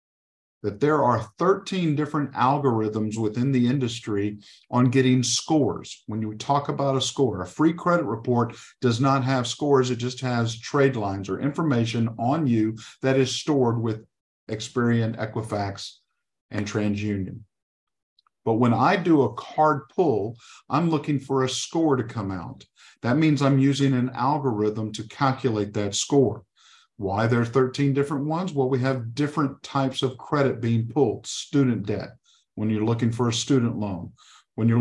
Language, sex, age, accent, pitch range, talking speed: English, male, 50-69, American, 105-135 Hz, 160 wpm